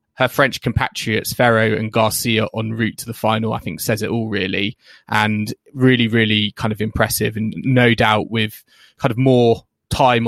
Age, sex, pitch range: 20-39, male, 110-125 Hz